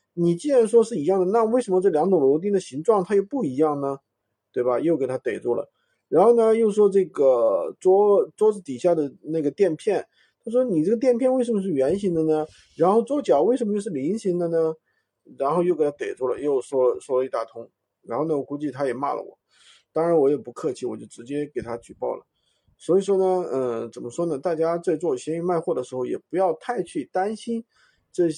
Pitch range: 155-220 Hz